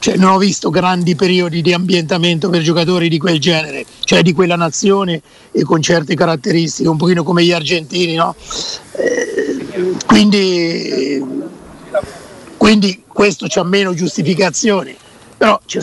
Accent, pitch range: native, 175-200 Hz